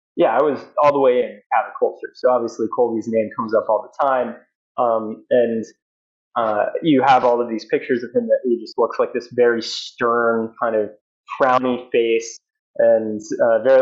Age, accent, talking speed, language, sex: 20-39, American, 190 wpm, English, male